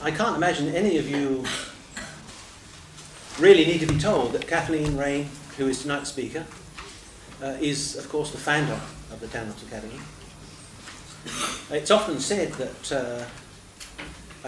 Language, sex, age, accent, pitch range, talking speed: English, male, 40-59, British, 125-150 Hz, 135 wpm